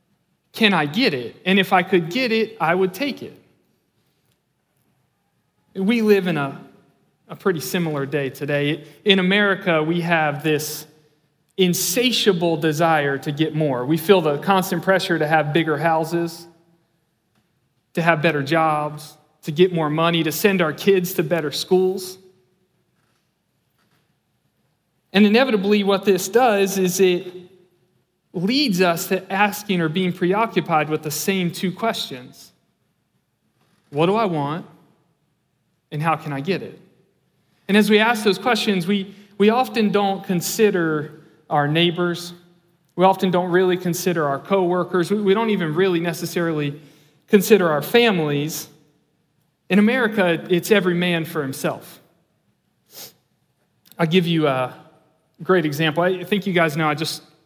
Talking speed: 140 wpm